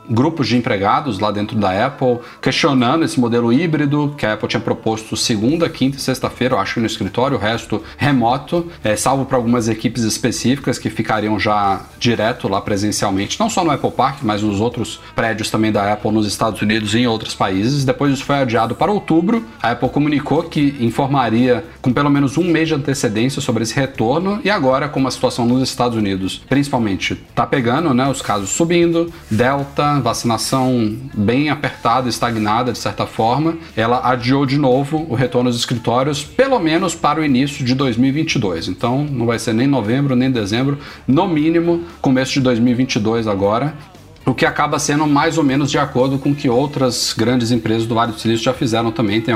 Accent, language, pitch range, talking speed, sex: Brazilian, Portuguese, 115-140 Hz, 185 wpm, male